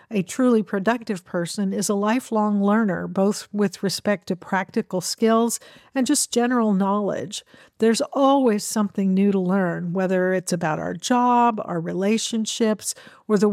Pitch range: 185-225 Hz